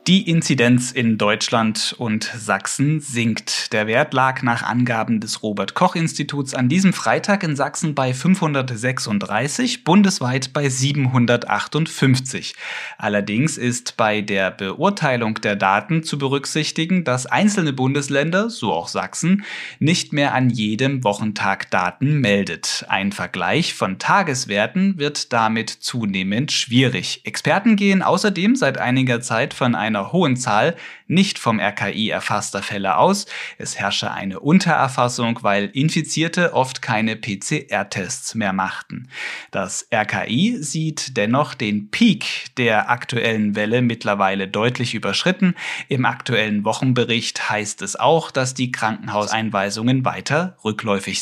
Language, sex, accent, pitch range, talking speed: German, male, German, 110-155 Hz, 125 wpm